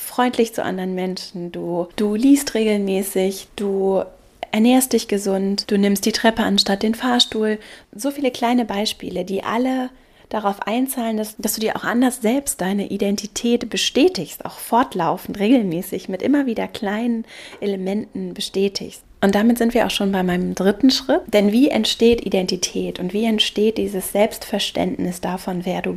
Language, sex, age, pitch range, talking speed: German, female, 30-49, 195-235 Hz, 155 wpm